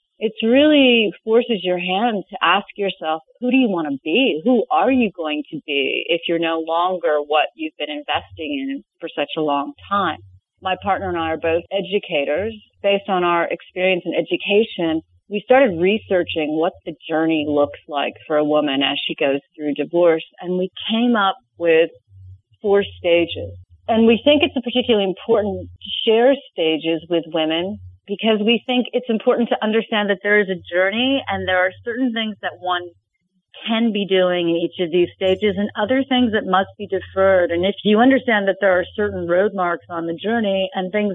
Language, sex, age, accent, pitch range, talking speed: English, female, 40-59, American, 160-220 Hz, 190 wpm